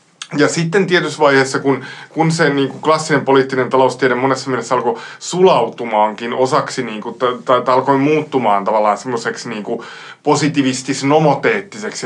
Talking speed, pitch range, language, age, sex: 130 wpm, 125-155 Hz, Finnish, 20-39, male